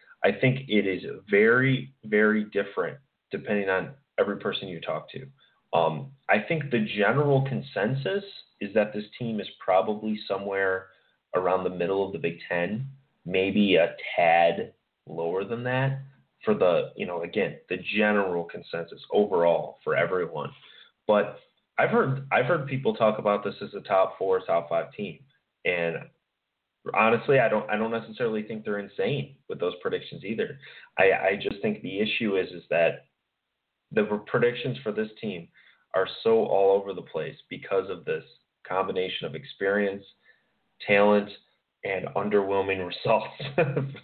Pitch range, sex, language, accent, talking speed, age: 95-135 Hz, male, English, American, 155 wpm, 30-49